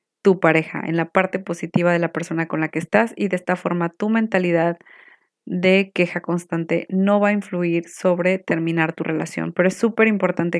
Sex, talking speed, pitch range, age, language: female, 195 wpm, 175-210 Hz, 20-39, Spanish